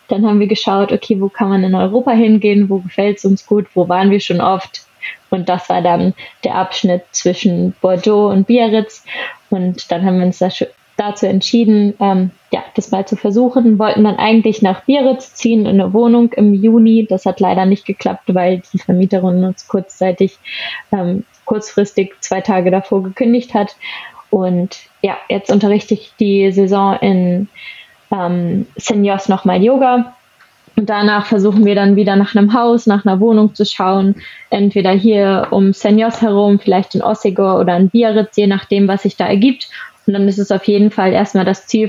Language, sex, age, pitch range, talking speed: German, female, 20-39, 190-220 Hz, 180 wpm